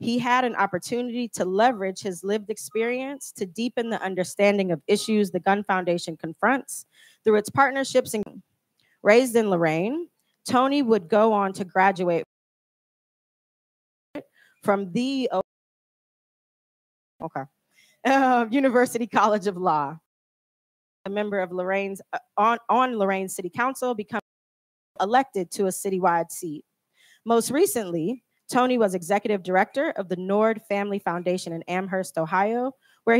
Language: English